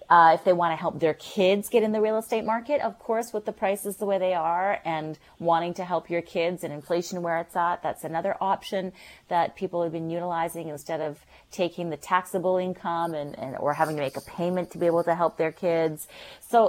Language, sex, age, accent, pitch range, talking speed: English, female, 30-49, American, 160-205 Hz, 230 wpm